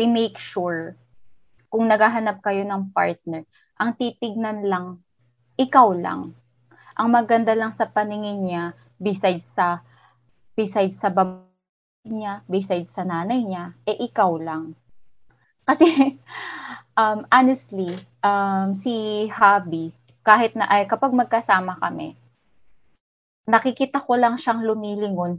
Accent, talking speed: native, 115 wpm